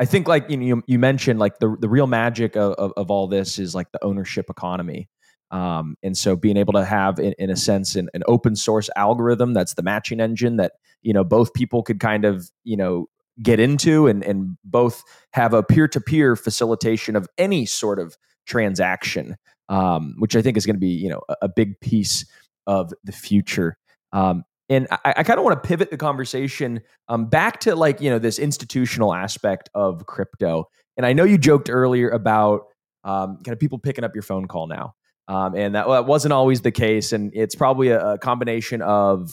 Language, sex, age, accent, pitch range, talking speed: English, male, 20-39, American, 100-130 Hz, 215 wpm